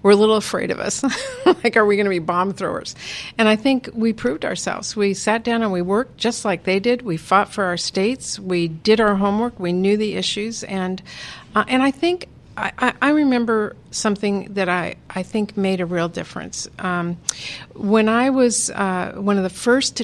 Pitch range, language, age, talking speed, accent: 180-215 Hz, English, 50-69, 205 wpm, American